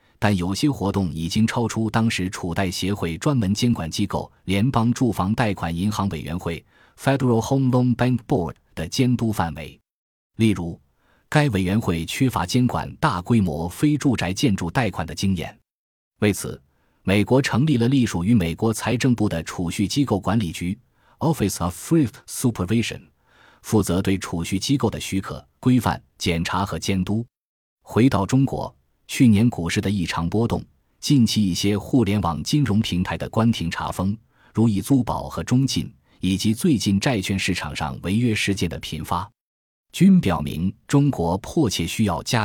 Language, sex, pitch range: Chinese, male, 90-120 Hz